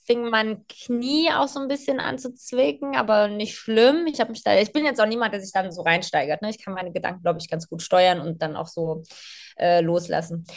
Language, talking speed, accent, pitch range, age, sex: German, 240 wpm, German, 200-250 Hz, 20-39, female